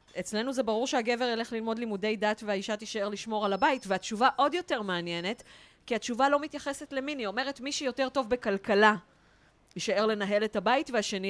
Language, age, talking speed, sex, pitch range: Hebrew, 30-49, 175 wpm, female, 185-240 Hz